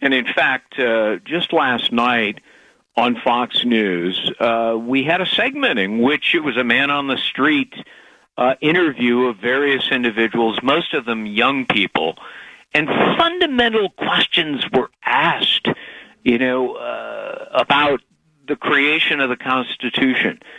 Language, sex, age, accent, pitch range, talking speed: English, male, 50-69, American, 115-160 Hz, 140 wpm